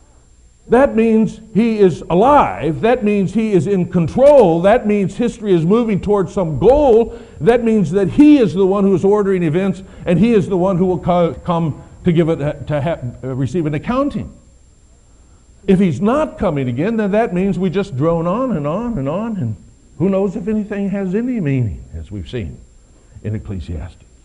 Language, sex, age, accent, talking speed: English, male, 60-79, American, 195 wpm